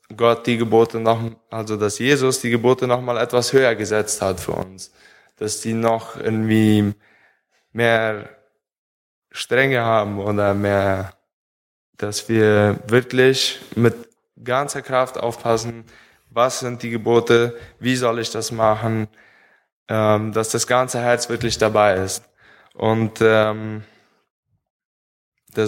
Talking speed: 120 wpm